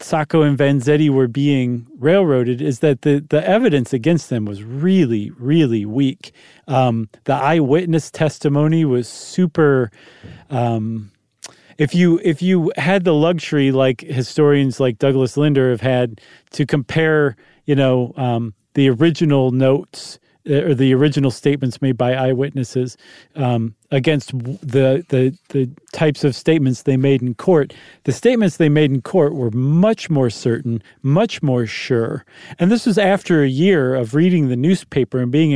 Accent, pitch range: American, 130-160 Hz